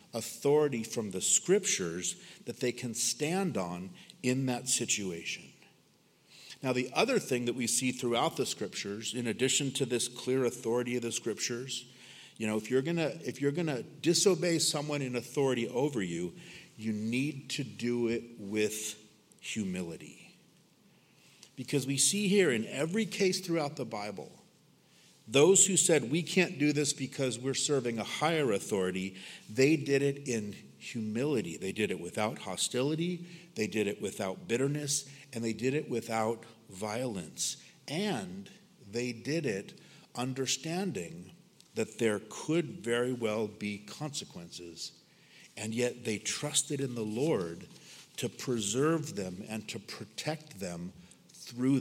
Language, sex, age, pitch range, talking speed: English, male, 50-69, 115-150 Hz, 140 wpm